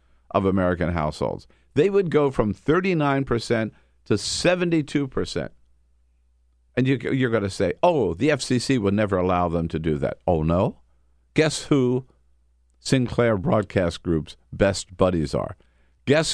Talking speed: 130 wpm